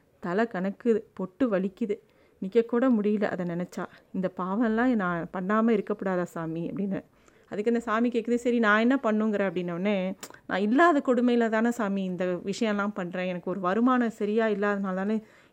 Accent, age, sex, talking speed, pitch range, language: native, 30-49, female, 145 wpm, 190-235 Hz, Tamil